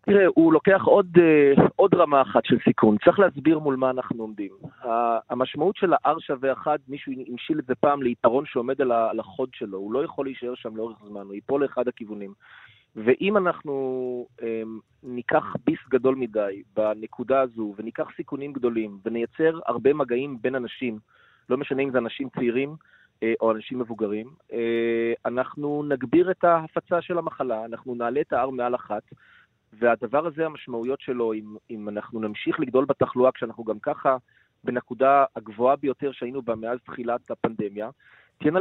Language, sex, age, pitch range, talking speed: Hebrew, male, 30-49, 115-140 Hz, 155 wpm